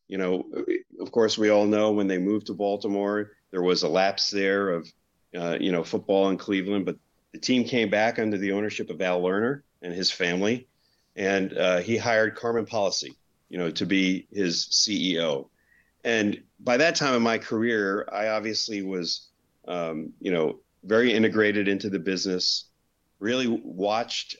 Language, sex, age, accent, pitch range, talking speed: English, male, 50-69, American, 95-110 Hz, 170 wpm